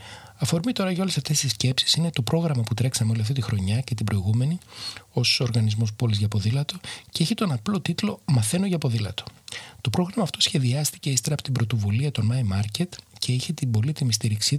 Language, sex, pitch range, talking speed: Greek, male, 110-145 Hz, 195 wpm